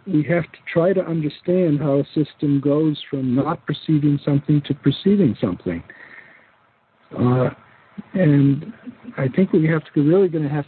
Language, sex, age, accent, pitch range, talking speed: English, male, 60-79, American, 135-160 Hz, 165 wpm